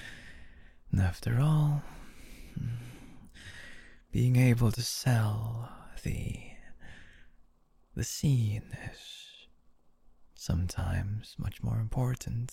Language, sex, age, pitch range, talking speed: English, male, 20-39, 80-120 Hz, 65 wpm